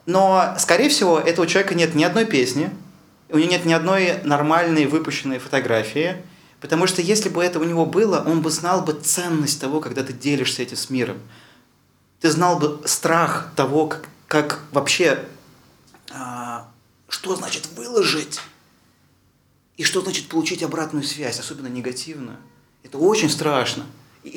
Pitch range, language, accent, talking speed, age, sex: 135-175 Hz, Russian, native, 150 wpm, 30-49, male